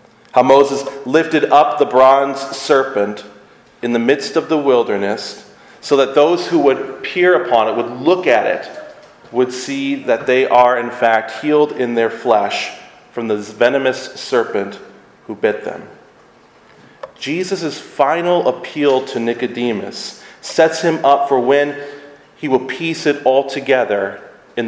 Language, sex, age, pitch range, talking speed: English, male, 40-59, 115-140 Hz, 145 wpm